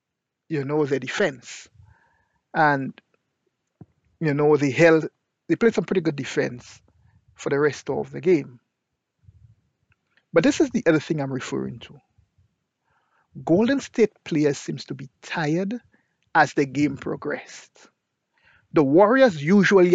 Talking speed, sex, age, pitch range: 130 wpm, male, 50-69, 140-175 Hz